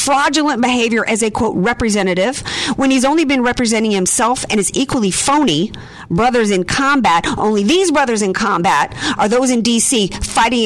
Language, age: English, 50-69